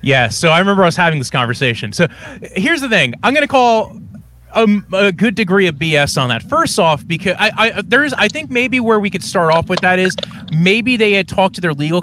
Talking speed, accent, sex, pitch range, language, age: 240 wpm, American, male, 145-195 Hz, English, 30-49